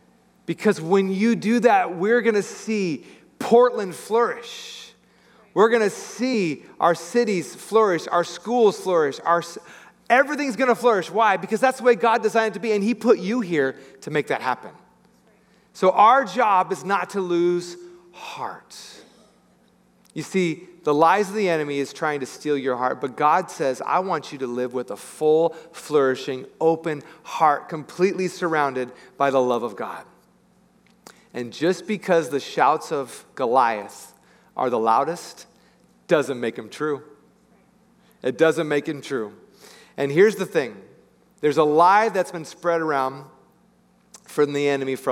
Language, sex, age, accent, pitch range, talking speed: English, male, 40-59, American, 145-210 Hz, 160 wpm